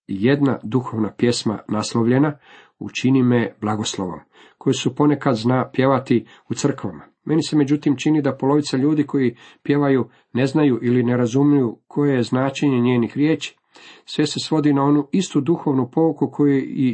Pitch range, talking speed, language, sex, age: 115-145 Hz, 155 wpm, Croatian, male, 50-69